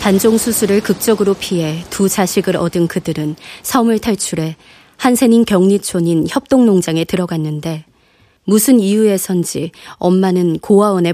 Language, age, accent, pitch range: Korean, 20-39, native, 170-210 Hz